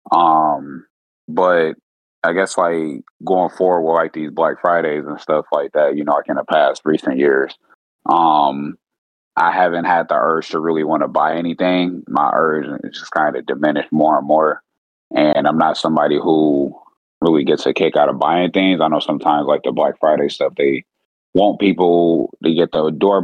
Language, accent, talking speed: English, American, 190 wpm